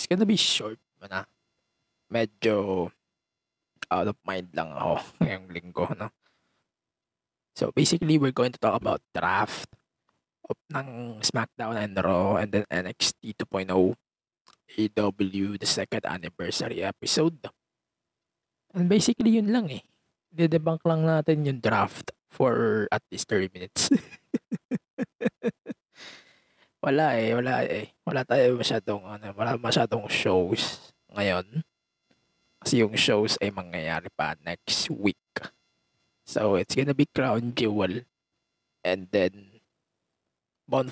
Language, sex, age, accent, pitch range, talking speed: English, male, 20-39, Filipino, 95-135 Hz, 115 wpm